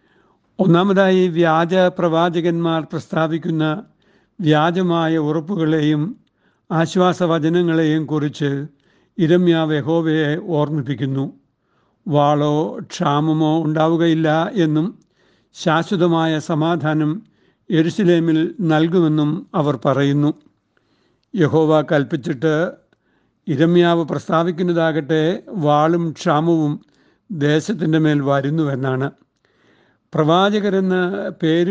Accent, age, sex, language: native, 60-79, male, Malayalam